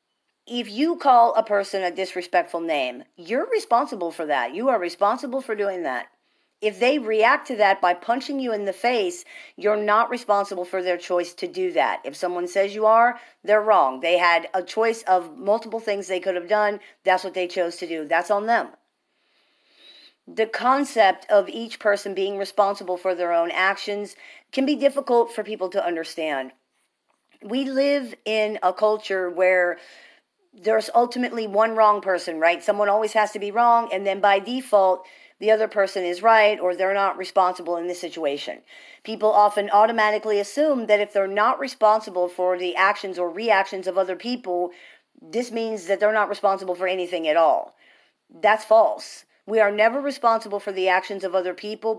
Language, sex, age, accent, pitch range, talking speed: English, female, 40-59, American, 185-225 Hz, 180 wpm